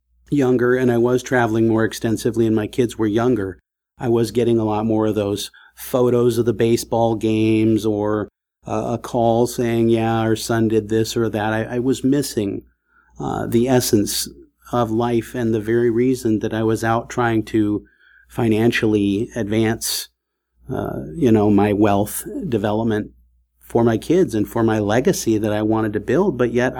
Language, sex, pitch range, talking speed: English, male, 110-125 Hz, 175 wpm